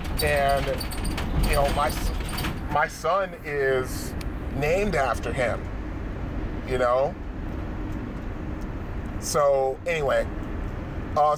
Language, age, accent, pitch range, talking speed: English, 30-49, American, 100-155 Hz, 80 wpm